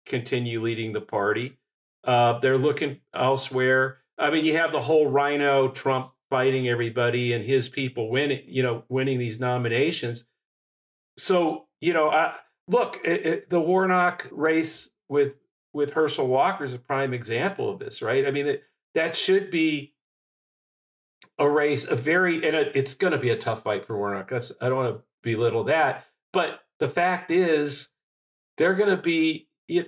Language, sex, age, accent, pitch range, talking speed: English, male, 40-59, American, 125-155 Hz, 175 wpm